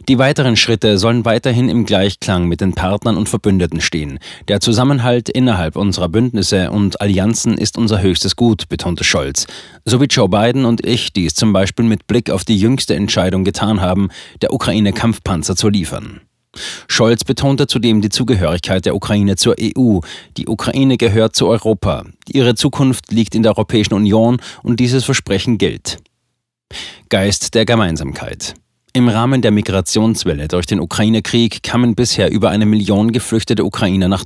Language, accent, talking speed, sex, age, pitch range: German, German, 160 wpm, male, 30-49, 95-120 Hz